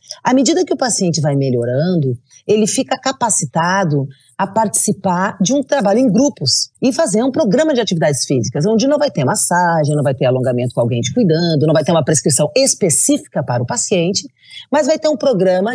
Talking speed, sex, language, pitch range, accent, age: 195 wpm, female, Portuguese, 150-235 Hz, Brazilian, 40-59